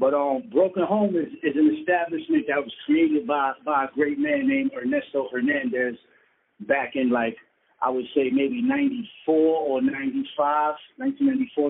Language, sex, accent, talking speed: English, male, American, 155 wpm